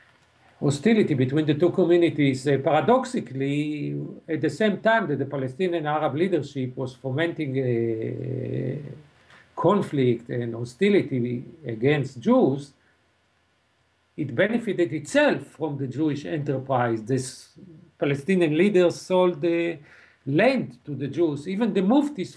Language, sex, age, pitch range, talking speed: English, male, 50-69, 135-180 Hz, 120 wpm